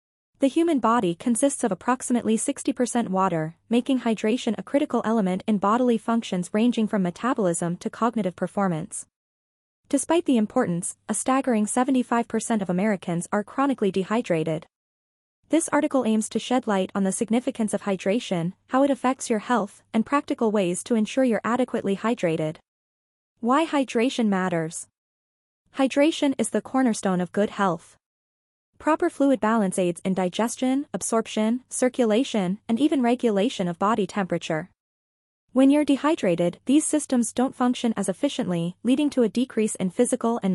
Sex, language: female, English